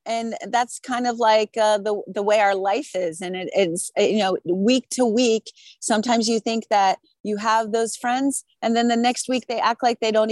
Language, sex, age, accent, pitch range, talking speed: English, female, 30-49, American, 195-230 Hz, 225 wpm